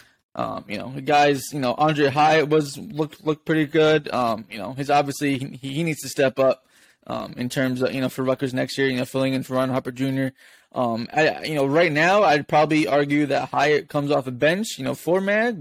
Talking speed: 240 wpm